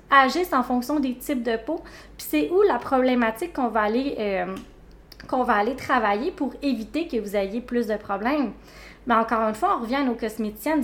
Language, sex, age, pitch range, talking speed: French, female, 20-39, 230-275 Hz, 200 wpm